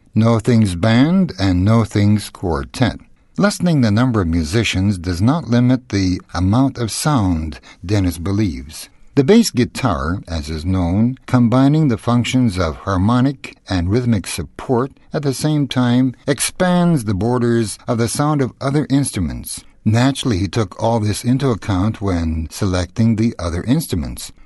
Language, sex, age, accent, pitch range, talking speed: Russian, male, 60-79, American, 95-130 Hz, 145 wpm